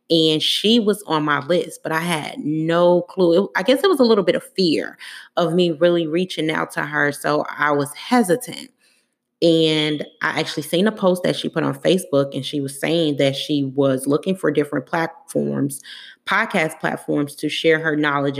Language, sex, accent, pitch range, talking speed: English, female, American, 145-170 Hz, 190 wpm